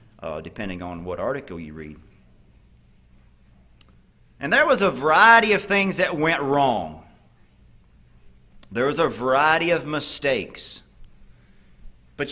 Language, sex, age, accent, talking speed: English, male, 40-59, American, 115 wpm